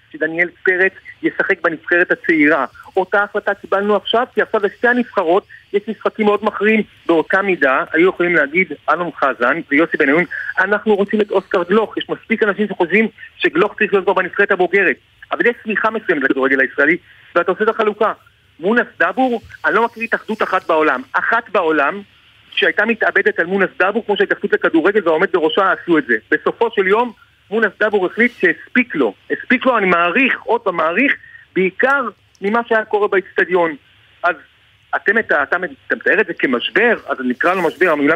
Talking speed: 145 wpm